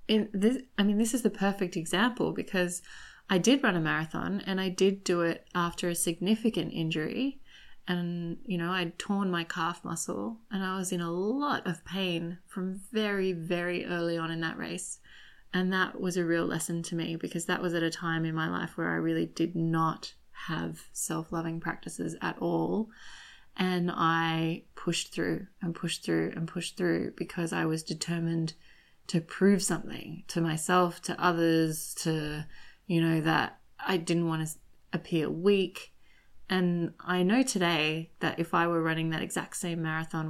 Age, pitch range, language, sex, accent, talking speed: 20-39, 160-185 Hz, English, female, Australian, 175 wpm